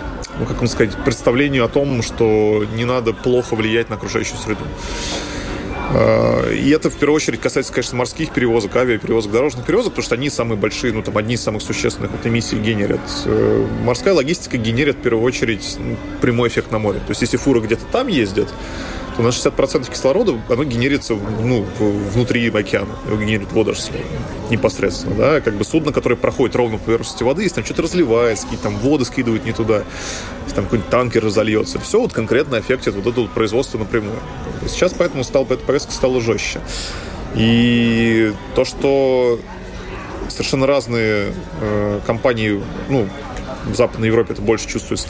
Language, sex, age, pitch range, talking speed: Russian, male, 20-39, 105-125 Hz, 160 wpm